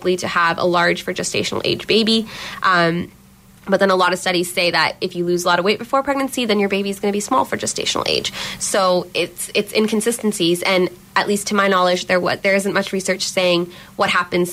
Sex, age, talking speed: female, 20-39, 230 wpm